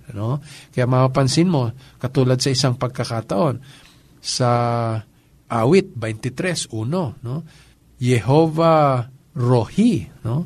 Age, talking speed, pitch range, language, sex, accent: 50-69, 85 wpm, 140-185 Hz, Filipino, male, native